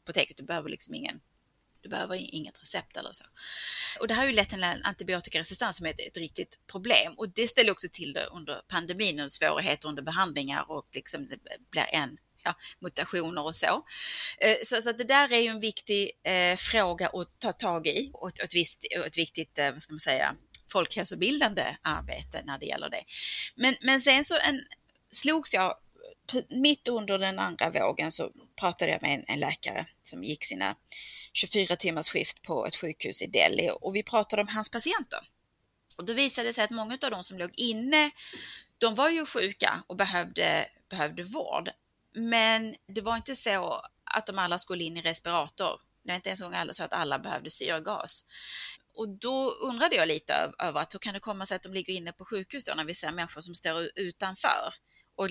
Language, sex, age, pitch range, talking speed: Swedish, female, 30-49, 175-250 Hz, 200 wpm